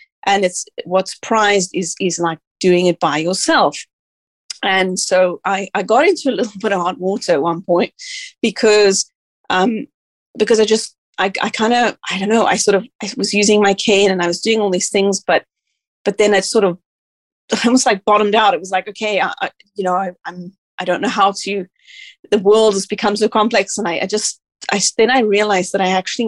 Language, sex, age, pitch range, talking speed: English, female, 30-49, 190-235 Hz, 215 wpm